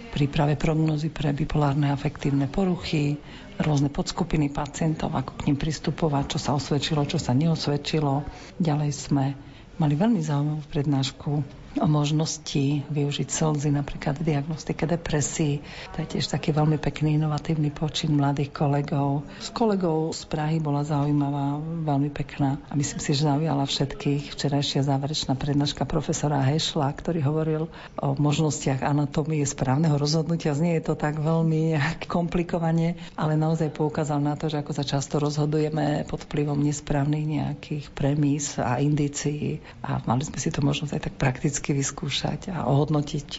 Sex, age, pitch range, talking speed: female, 50-69, 145-160 Hz, 145 wpm